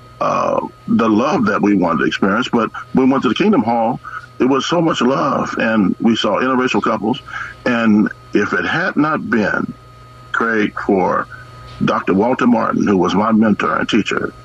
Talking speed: 180 wpm